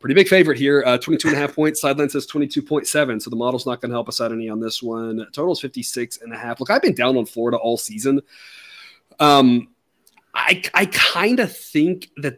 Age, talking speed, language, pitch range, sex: 30-49, 225 wpm, English, 120-145 Hz, male